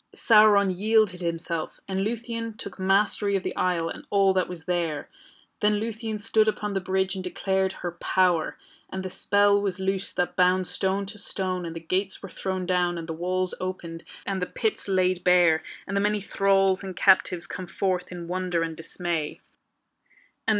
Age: 30-49